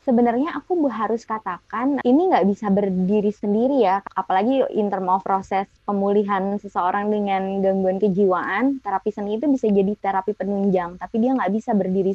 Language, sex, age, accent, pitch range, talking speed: Indonesian, female, 20-39, native, 200-255 Hz, 160 wpm